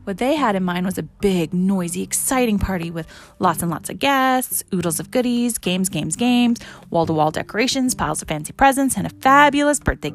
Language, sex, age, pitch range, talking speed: English, female, 30-49, 170-230 Hz, 195 wpm